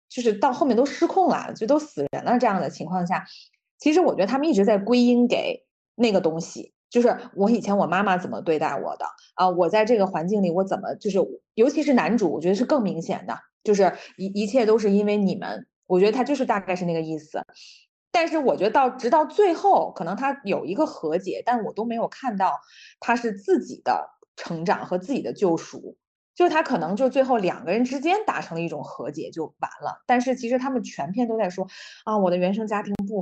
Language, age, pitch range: Chinese, 20-39, 180-250 Hz